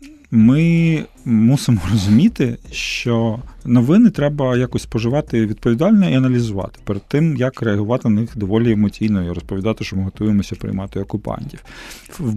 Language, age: Ukrainian, 40-59